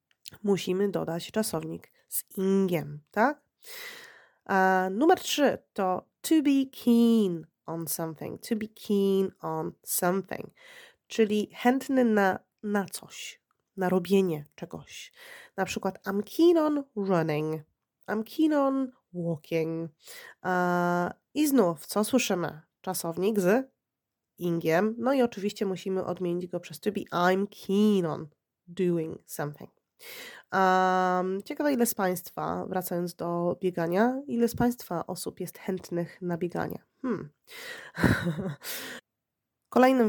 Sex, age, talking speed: female, 30-49, 110 wpm